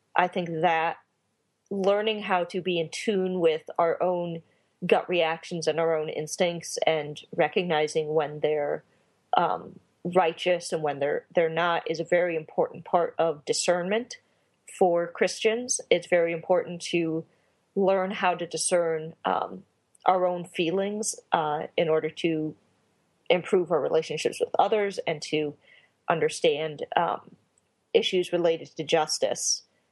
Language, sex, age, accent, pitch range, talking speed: English, female, 30-49, American, 160-195 Hz, 135 wpm